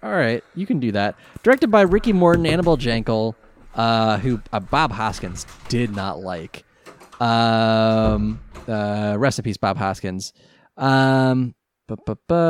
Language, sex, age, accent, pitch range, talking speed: English, male, 20-39, American, 100-135 Hz, 120 wpm